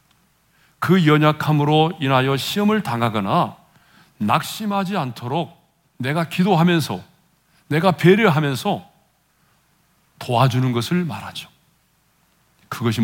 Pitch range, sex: 120-175 Hz, male